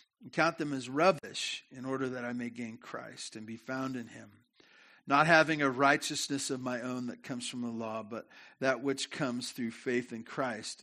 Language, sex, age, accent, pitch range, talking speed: English, male, 50-69, American, 130-190 Hz, 205 wpm